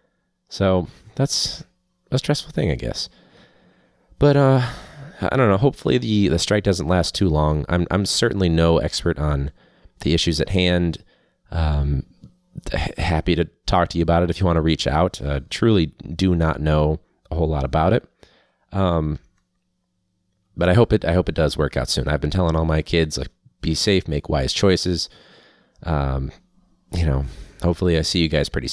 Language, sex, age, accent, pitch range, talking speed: English, male, 30-49, American, 75-95 Hz, 185 wpm